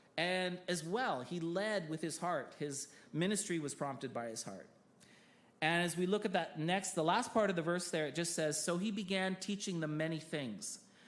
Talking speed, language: 210 wpm, English